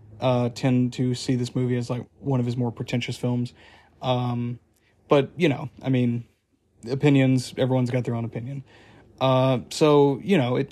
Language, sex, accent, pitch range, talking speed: English, male, American, 120-135 Hz, 175 wpm